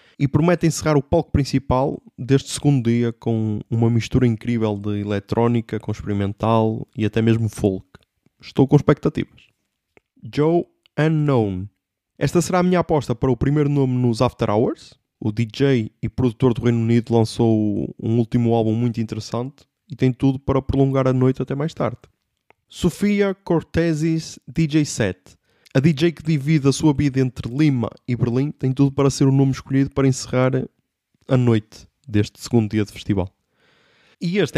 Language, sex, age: Portuguese, male, 20-39